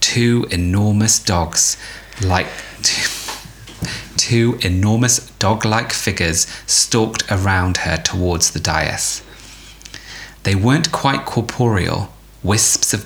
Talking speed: 95 wpm